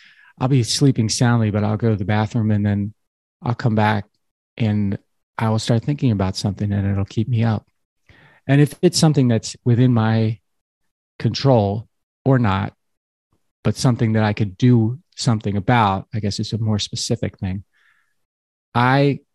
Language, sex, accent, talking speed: English, male, American, 165 wpm